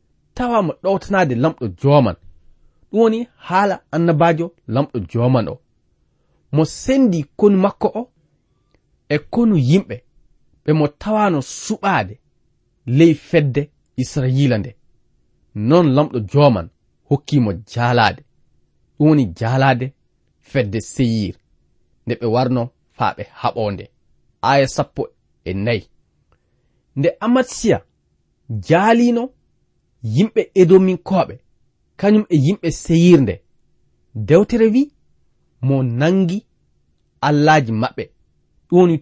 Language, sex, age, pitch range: English, male, 30-49, 115-175 Hz